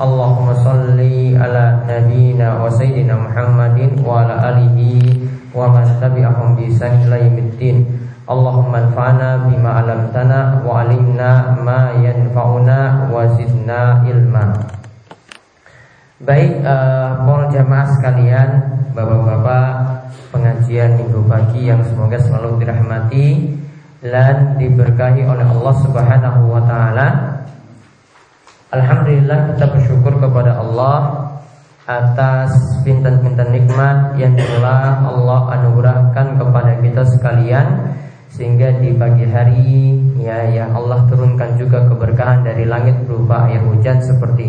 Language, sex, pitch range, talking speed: Indonesian, male, 120-130 Hz, 95 wpm